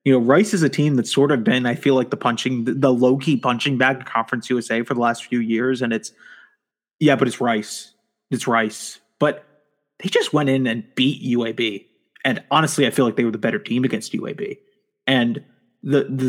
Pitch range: 120-140 Hz